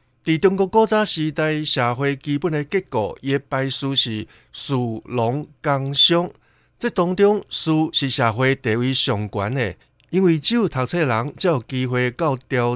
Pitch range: 125-170 Hz